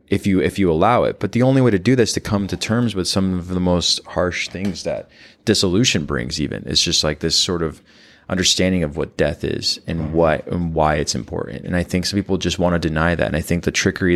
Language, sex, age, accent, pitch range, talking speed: English, male, 20-39, American, 80-95 Hz, 255 wpm